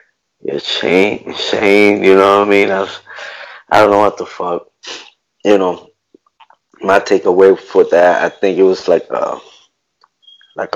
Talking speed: 145 wpm